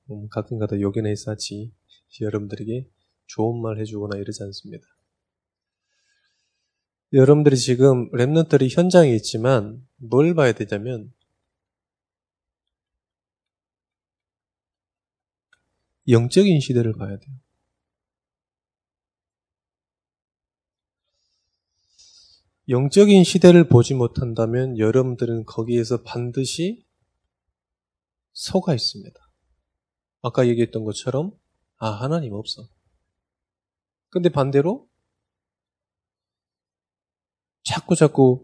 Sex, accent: male, native